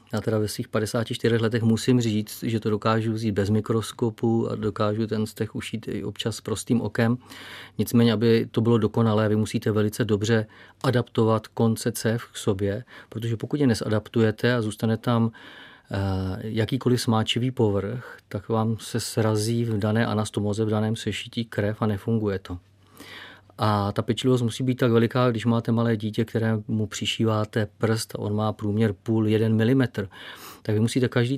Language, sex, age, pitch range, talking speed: Czech, male, 40-59, 105-120 Hz, 165 wpm